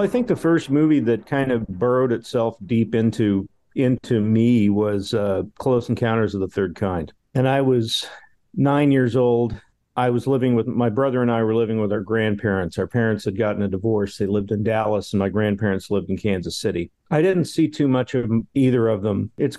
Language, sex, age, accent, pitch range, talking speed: English, male, 50-69, American, 100-125 Hz, 210 wpm